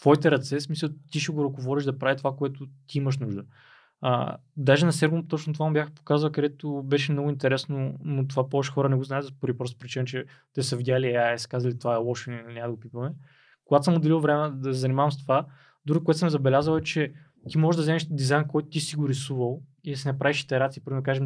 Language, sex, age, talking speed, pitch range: Bulgarian, male, 20-39, 240 wpm, 135-155 Hz